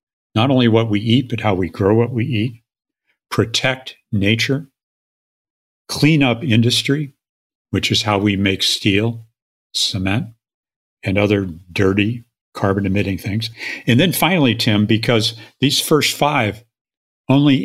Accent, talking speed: American, 130 wpm